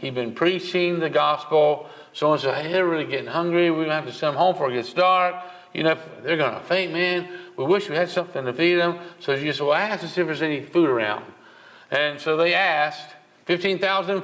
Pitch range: 145-190 Hz